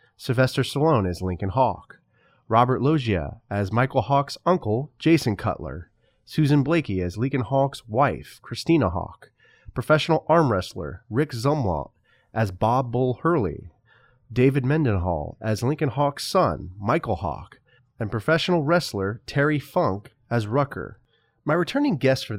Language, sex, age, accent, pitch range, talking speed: English, male, 30-49, American, 100-140 Hz, 130 wpm